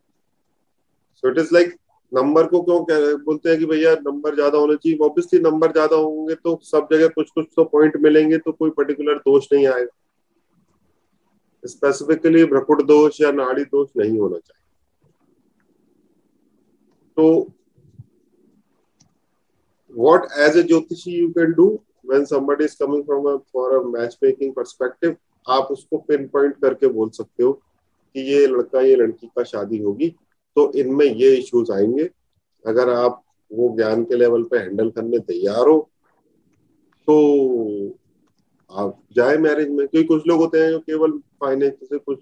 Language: Hindi